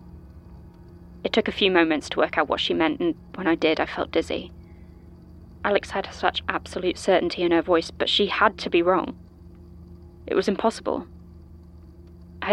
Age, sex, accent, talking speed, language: 20-39, female, British, 170 wpm, English